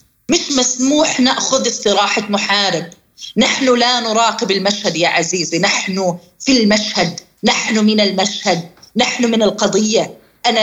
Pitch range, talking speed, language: 205-270 Hz, 120 wpm, Arabic